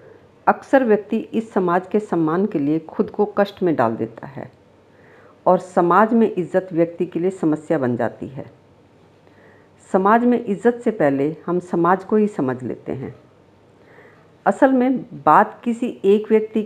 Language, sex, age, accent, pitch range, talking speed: Hindi, female, 50-69, native, 155-220 Hz, 160 wpm